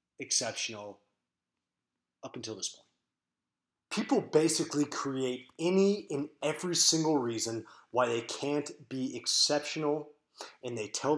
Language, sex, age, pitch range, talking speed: English, male, 30-49, 110-145 Hz, 115 wpm